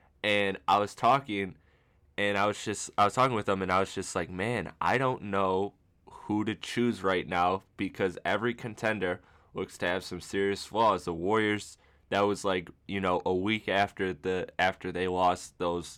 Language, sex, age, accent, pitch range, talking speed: English, male, 10-29, American, 90-100 Hz, 190 wpm